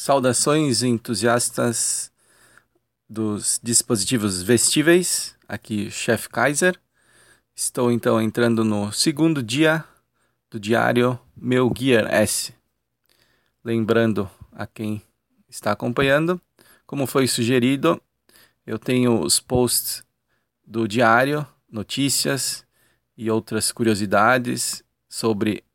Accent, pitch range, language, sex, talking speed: Brazilian, 110-125 Hz, Portuguese, male, 90 wpm